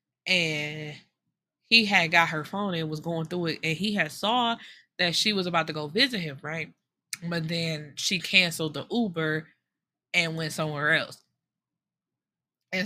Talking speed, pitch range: 165 wpm, 160-225 Hz